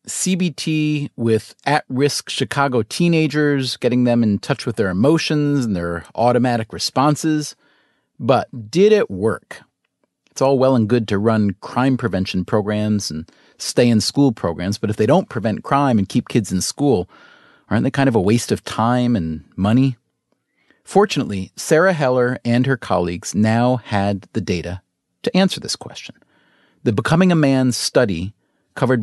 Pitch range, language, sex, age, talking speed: 105-140 Hz, English, male, 30-49, 155 wpm